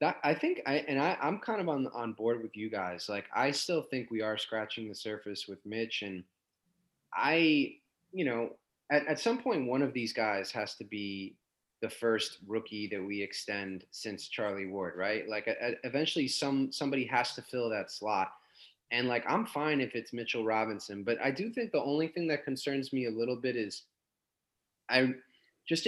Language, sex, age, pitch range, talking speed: English, male, 20-39, 105-135 Hz, 190 wpm